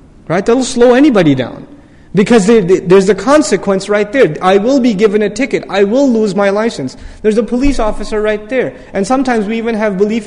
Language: English